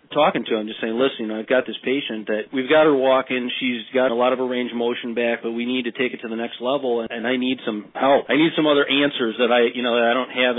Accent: American